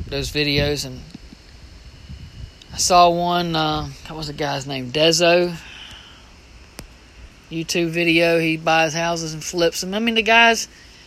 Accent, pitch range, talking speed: American, 130-200 Hz, 135 wpm